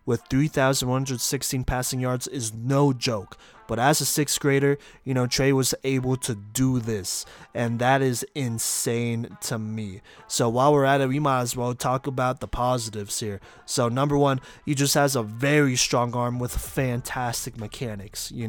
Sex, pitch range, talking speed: male, 115-140 Hz, 175 wpm